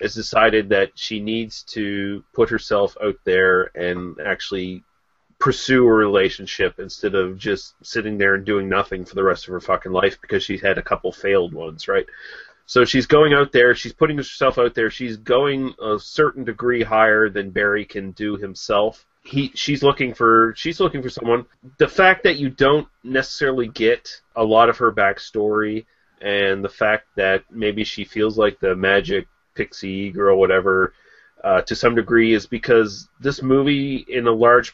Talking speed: 175 wpm